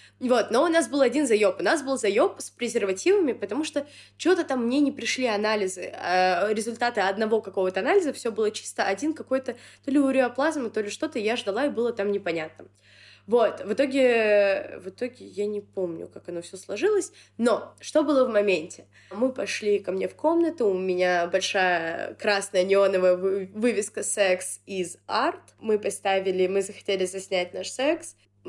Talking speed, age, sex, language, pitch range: 175 wpm, 20-39, female, Russian, 190-265 Hz